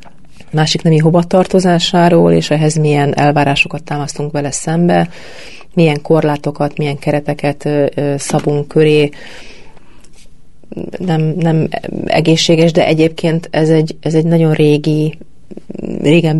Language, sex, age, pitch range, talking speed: Hungarian, female, 30-49, 145-160 Hz, 105 wpm